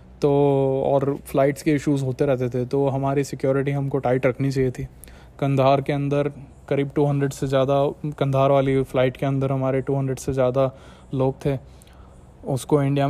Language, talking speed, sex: Hindi, 165 wpm, male